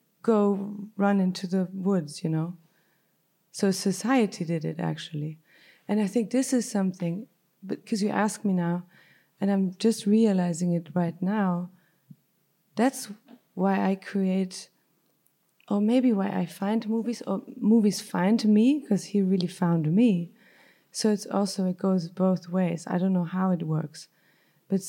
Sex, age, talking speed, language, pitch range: female, 30-49, 150 wpm, English, 175-210 Hz